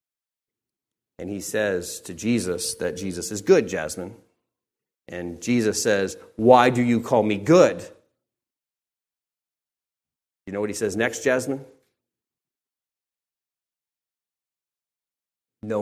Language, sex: English, male